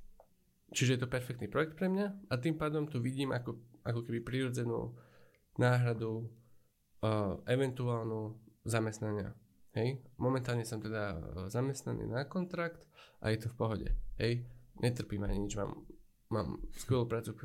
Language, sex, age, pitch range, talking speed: Slovak, male, 10-29, 110-130 Hz, 140 wpm